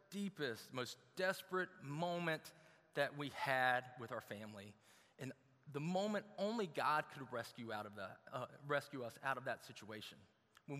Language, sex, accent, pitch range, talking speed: English, male, American, 125-170 Hz, 155 wpm